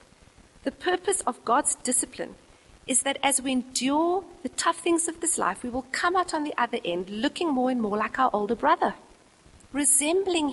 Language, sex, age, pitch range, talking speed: English, female, 40-59, 250-335 Hz, 190 wpm